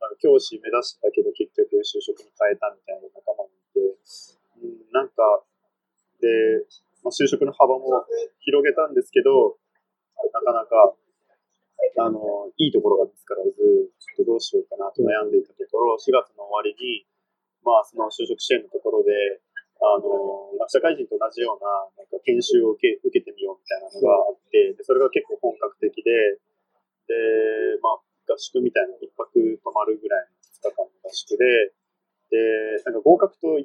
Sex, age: male, 20-39